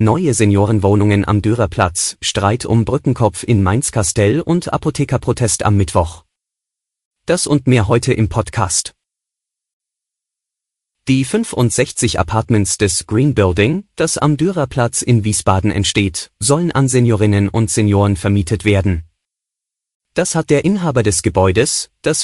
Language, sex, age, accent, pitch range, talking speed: German, male, 30-49, German, 100-125 Hz, 120 wpm